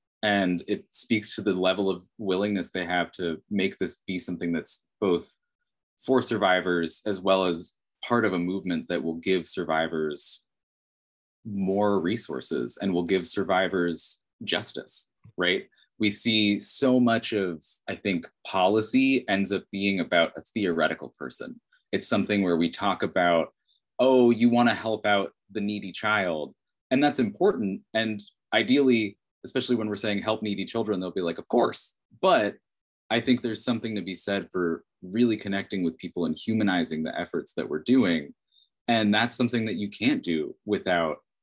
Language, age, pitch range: English, 20-39, 85-110 Hz